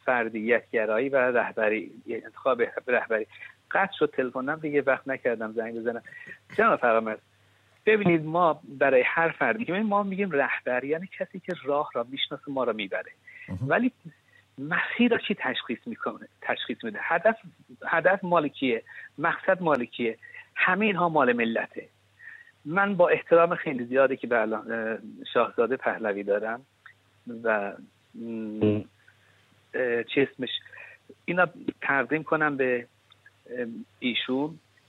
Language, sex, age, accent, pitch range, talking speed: English, male, 50-69, Canadian, 120-185 Hz, 115 wpm